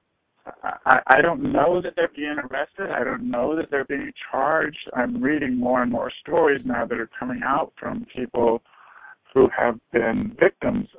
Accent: American